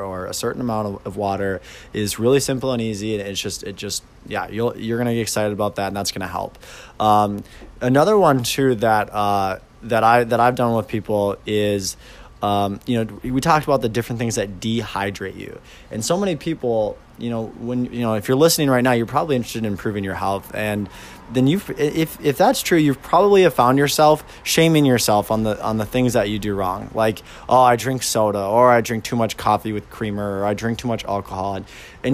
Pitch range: 105-140 Hz